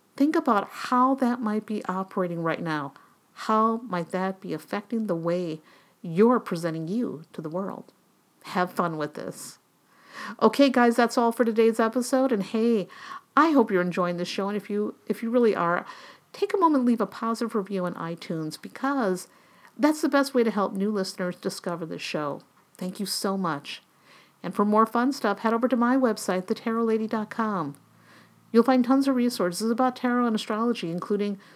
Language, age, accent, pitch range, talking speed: English, 50-69, American, 185-235 Hz, 180 wpm